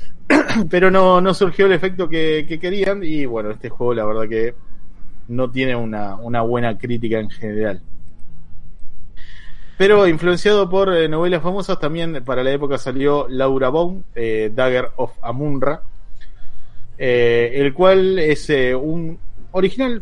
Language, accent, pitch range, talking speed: Spanish, Argentinian, 115-150 Hz, 140 wpm